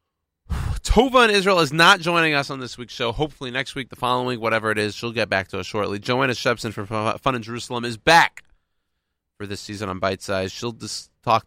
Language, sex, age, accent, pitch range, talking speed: English, male, 30-49, American, 95-125 Hz, 215 wpm